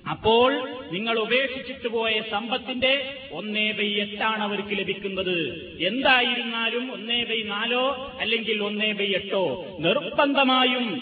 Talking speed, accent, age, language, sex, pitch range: 105 wpm, native, 30-49, Malayalam, male, 210-255 Hz